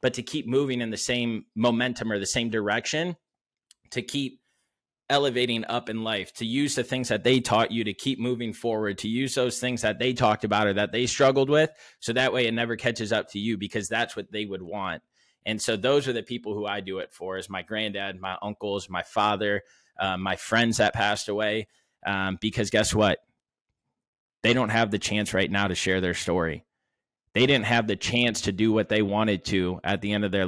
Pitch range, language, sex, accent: 105-120 Hz, English, male, American